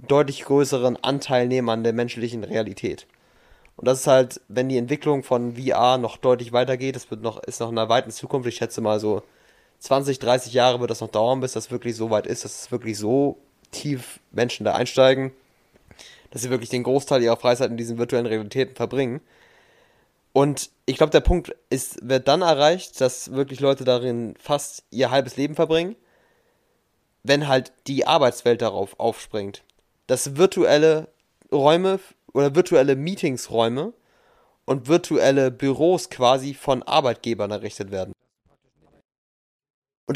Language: German